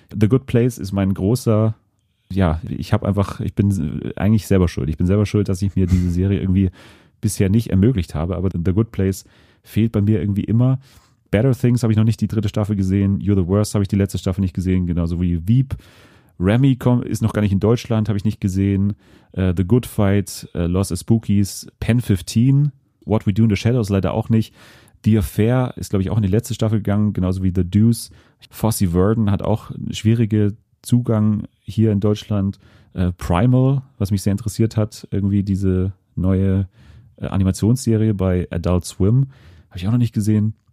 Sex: male